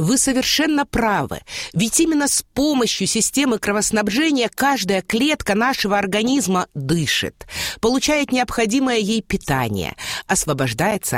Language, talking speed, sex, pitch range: Russian, 100 wpm, female, 170-270 Hz